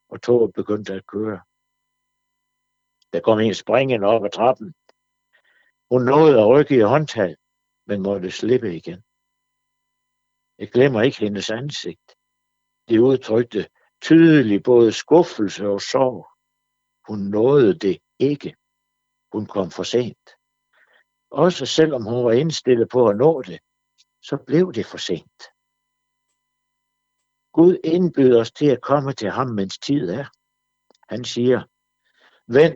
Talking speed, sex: 130 wpm, male